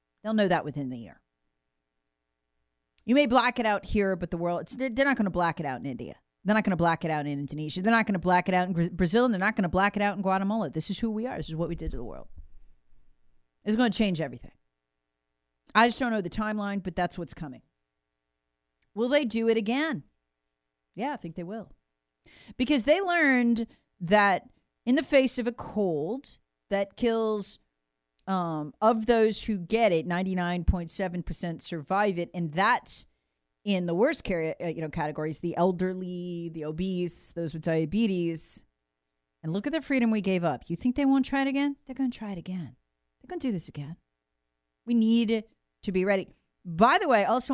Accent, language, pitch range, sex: American, English, 150-225 Hz, female